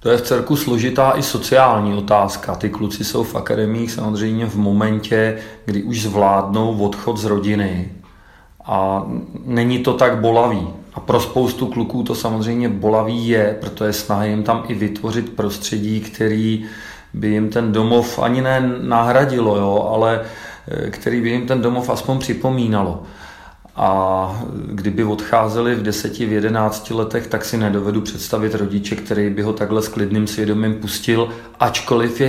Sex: male